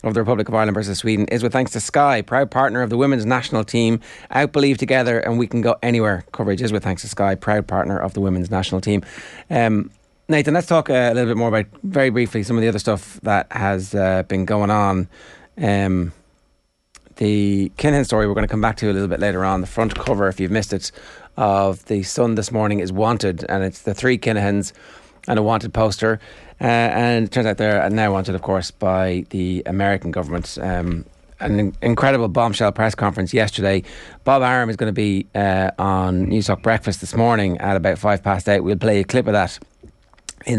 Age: 30-49